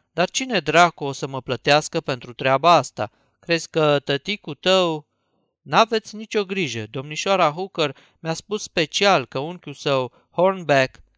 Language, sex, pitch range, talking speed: Romanian, male, 135-185 Hz, 140 wpm